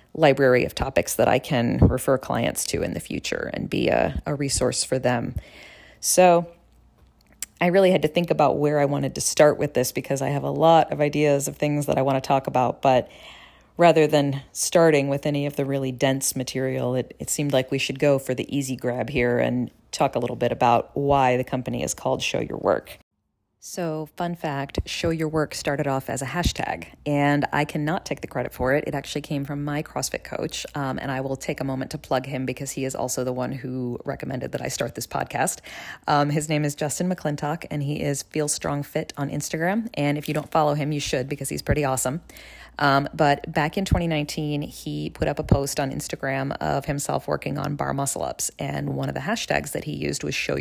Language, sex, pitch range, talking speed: English, female, 130-150 Hz, 225 wpm